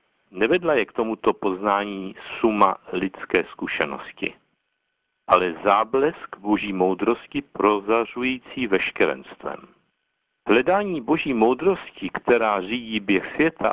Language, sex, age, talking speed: Czech, male, 60-79, 90 wpm